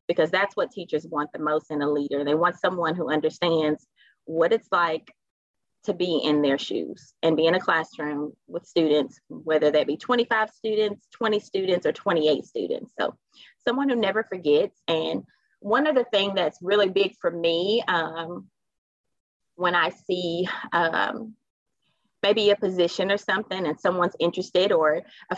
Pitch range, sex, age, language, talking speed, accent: 165-260 Hz, female, 30-49, English, 160 wpm, American